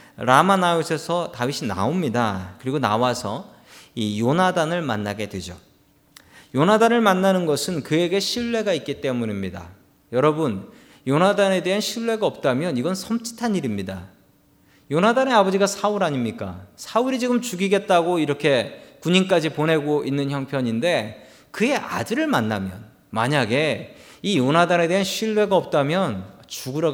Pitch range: 135-195 Hz